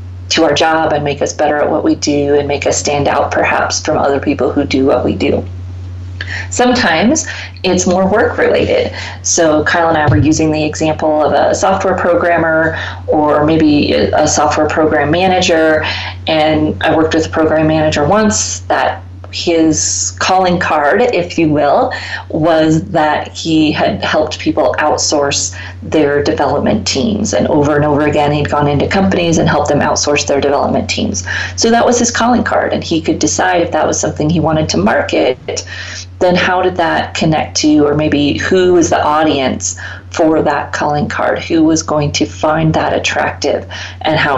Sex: female